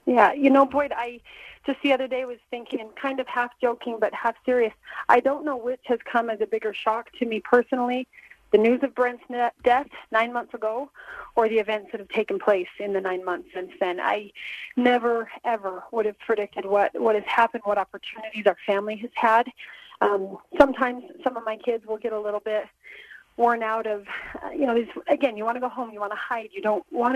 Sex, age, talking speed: female, 30-49, 215 wpm